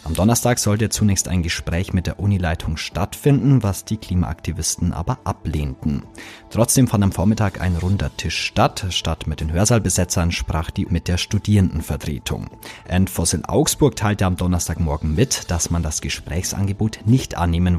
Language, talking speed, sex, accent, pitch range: German, 150 wpm, male, German, 80-105 Hz